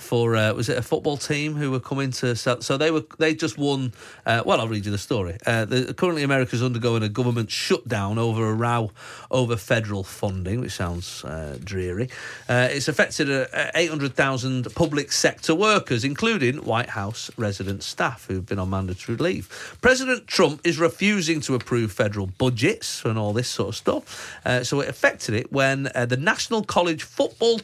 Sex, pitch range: male, 115-170 Hz